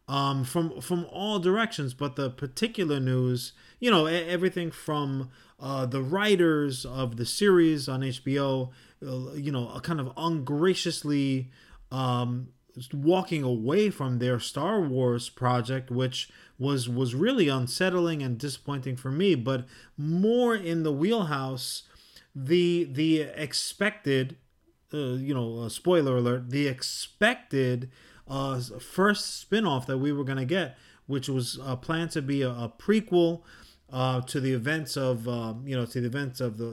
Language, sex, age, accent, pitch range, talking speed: English, male, 30-49, American, 125-170 Hz, 150 wpm